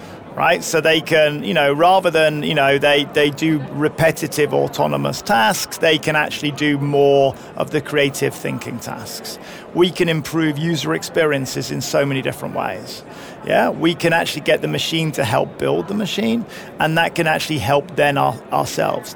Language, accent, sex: Finnish, British, male